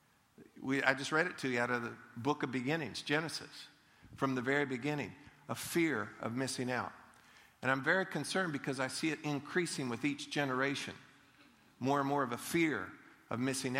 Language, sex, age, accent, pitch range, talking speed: English, male, 50-69, American, 130-160 Hz, 185 wpm